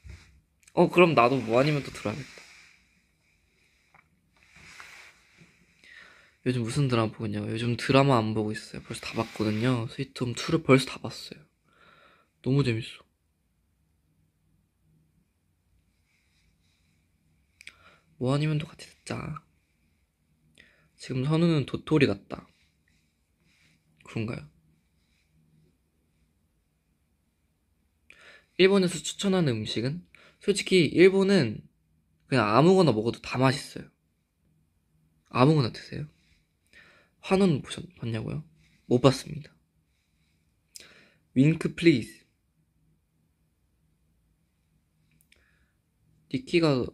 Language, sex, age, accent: Korean, male, 20-39, native